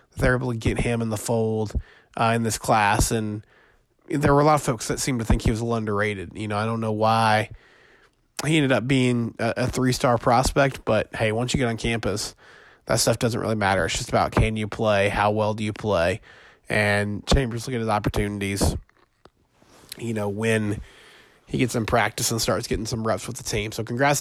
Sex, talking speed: male, 220 wpm